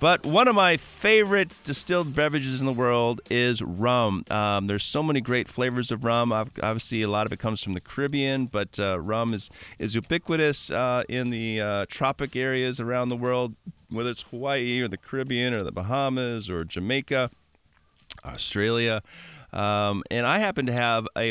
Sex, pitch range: male, 105-135 Hz